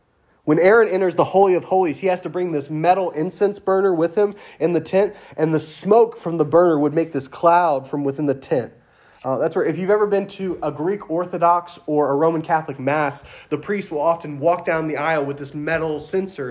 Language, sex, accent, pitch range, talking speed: English, male, American, 130-175 Hz, 225 wpm